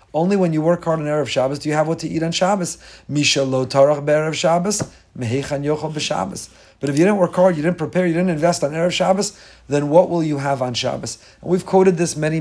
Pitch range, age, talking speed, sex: 130-165 Hz, 30-49, 235 wpm, male